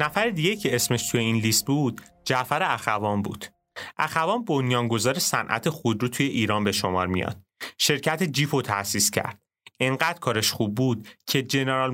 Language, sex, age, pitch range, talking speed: Persian, male, 30-49, 110-145 Hz, 155 wpm